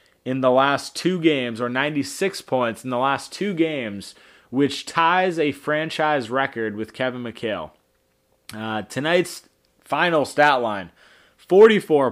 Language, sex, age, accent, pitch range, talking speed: English, male, 30-49, American, 110-150 Hz, 135 wpm